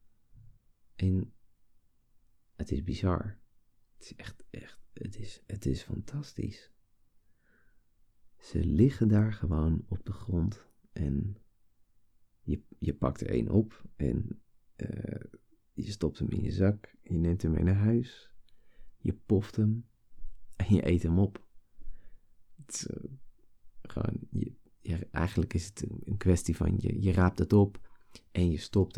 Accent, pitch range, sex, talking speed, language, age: Dutch, 90-110 Hz, male, 145 wpm, Dutch, 40-59